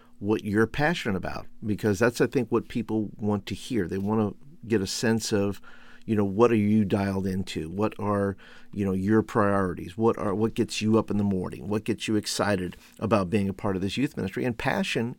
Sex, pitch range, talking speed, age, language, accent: male, 95-115 Hz, 220 wpm, 50-69, English, American